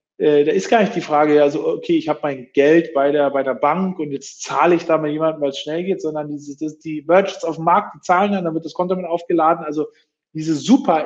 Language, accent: German, German